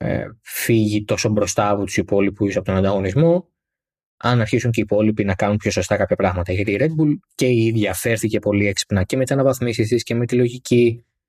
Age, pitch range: 20-39, 100-125 Hz